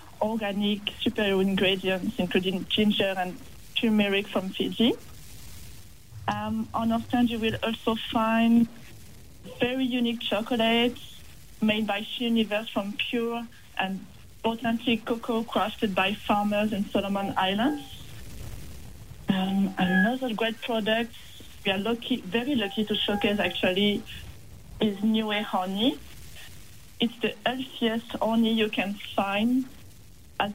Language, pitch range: English, 195-230 Hz